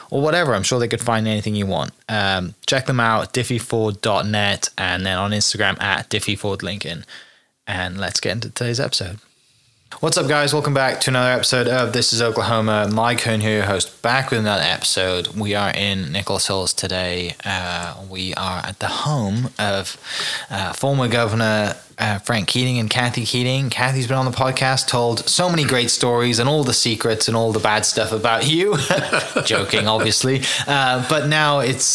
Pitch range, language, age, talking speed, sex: 100-120 Hz, English, 20-39, 185 wpm, male